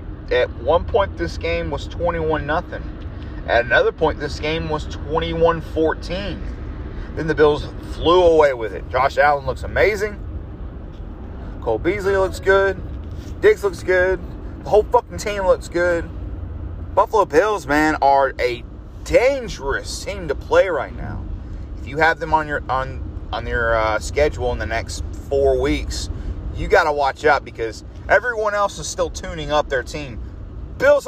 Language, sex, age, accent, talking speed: English, male, 30-49, American, 155 wpm